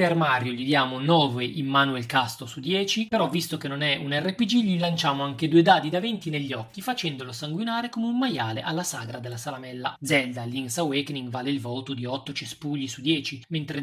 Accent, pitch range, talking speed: native, 135-170 Hz, 200 wpm